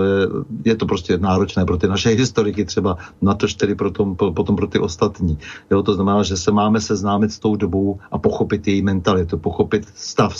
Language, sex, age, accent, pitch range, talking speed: Czech, male, 40-59, native, 100-125 Hz, 210 wpm